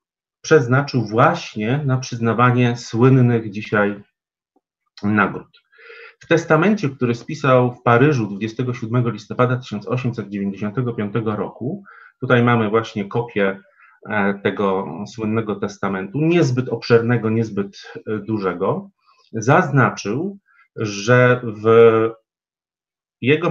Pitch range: 110-135 Hz